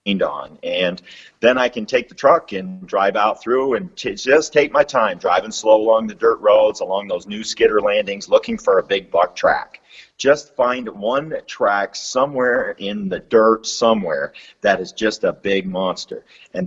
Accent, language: American, English